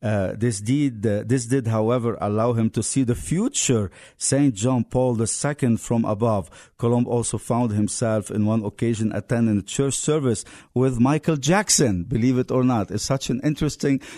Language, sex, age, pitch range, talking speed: English, male, 50-69, 110-135 Hz, 175 wpm